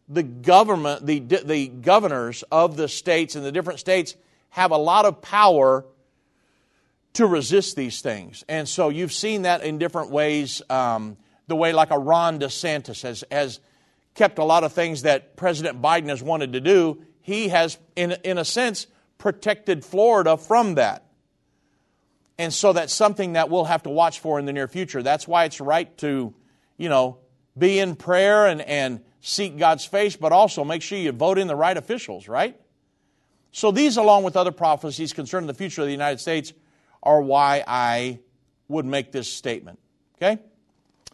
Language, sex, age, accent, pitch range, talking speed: English, male, 50-69, American, 140-185 Hz, 175 wpm